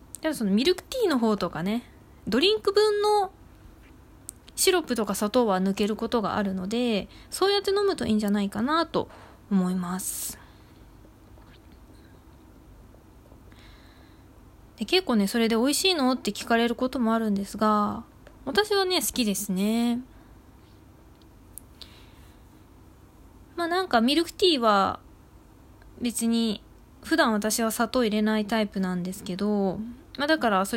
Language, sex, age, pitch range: Japanese, female, 20-39, 185-265 Hz